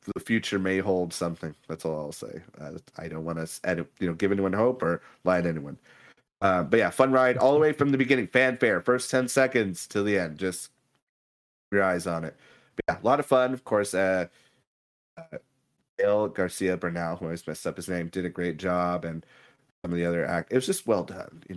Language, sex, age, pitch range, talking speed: English, male, 30-49, 90-115 Hz, 230 wpm